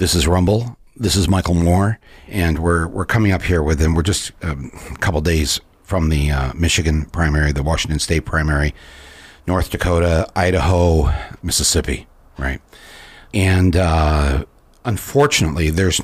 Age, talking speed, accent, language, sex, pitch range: 60-79, 140 wpm, American, English, male, 75-90 Hz